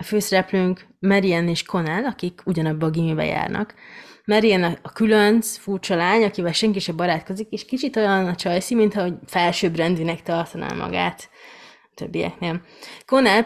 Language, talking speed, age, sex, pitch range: Hungarian, 145 wpm, 20-39, female, 170-215 Hz